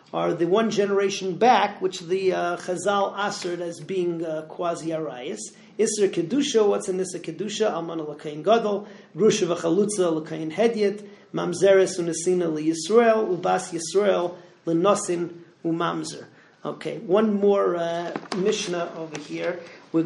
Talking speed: 140 wpm